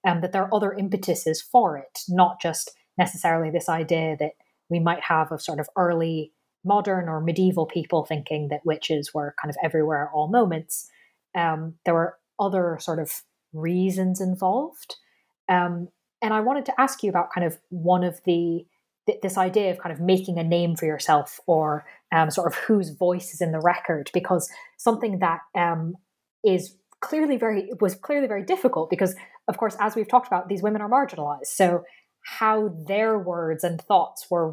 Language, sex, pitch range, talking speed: English, female, 170-220 Hz, 185 wpm